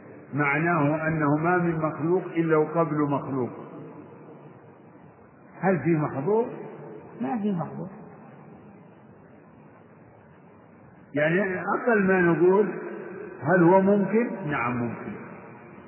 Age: 50-69